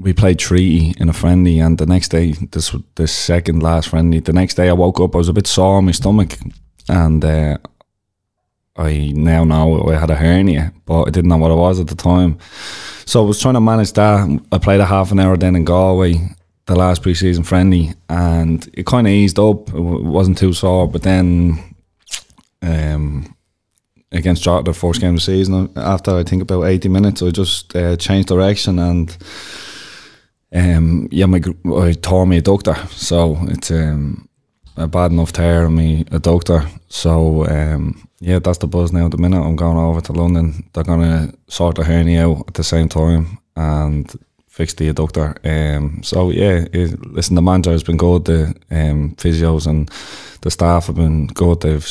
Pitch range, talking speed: 80-90 Hz, 195 wpm